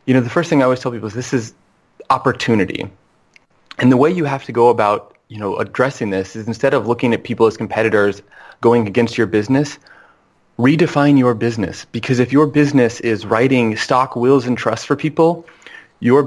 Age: 30-49